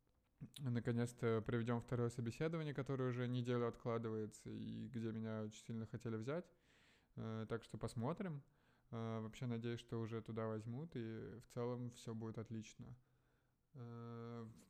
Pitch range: 110-125 Hz